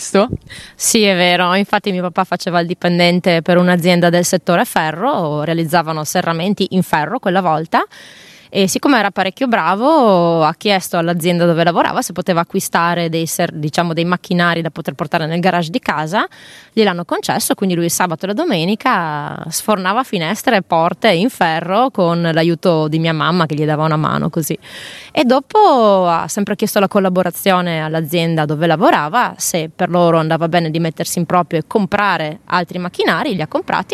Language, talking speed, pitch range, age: Italian, 175 wpm, 165-195 Hz, 20-39